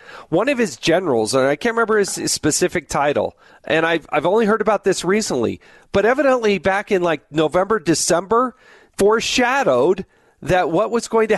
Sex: male